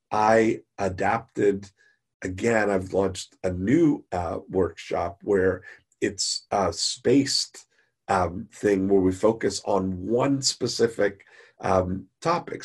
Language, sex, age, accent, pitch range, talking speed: English, male, 40-59, American, 95-110 Hz, 110 wpm